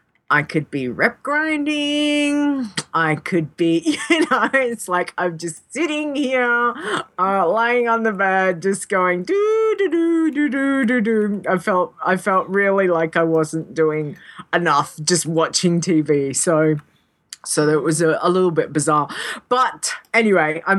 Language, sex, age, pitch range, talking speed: English, female, 30-49, 165-255 Hz, 155 wpm